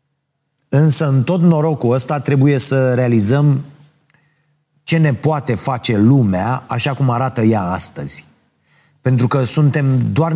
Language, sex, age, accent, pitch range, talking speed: Romanian, male, 30-49, native, 125-150 Hz, 125 wpm